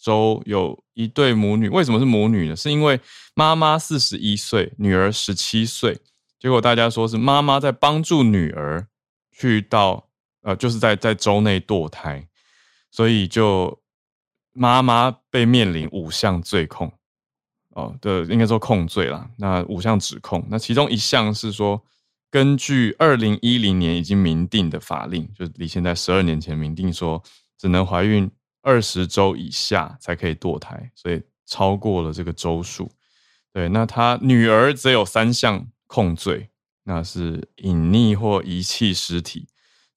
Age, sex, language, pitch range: 20-39, male, Chinese, 95-125 Hz